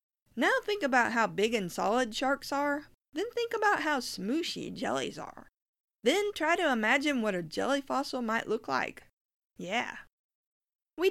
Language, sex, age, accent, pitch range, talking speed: English, female, 40-59, American, 195-280 Hz, 155 wpm